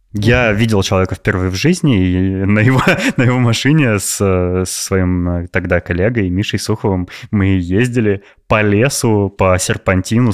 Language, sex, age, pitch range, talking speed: Russian, male, 20-39, 90-115 Hz, 140 wpm